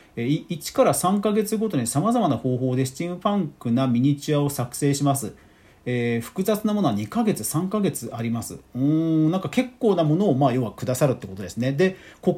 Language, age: Japanese, 40-59